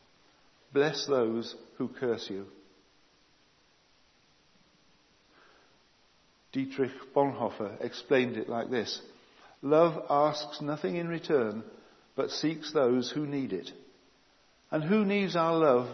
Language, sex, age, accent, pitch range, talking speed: English, male, 60-79, British, 130-155 Hz, 100 wpm